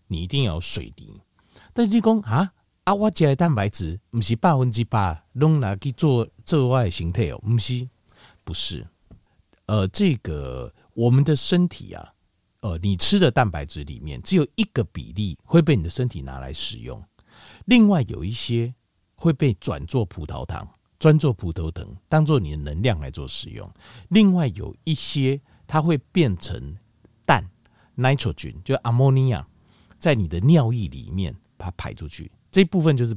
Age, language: 50-69, Chinese